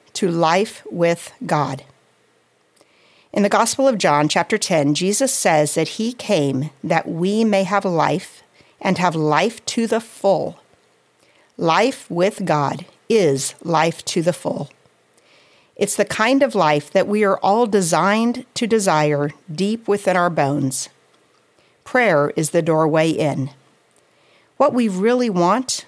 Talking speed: 140 wpm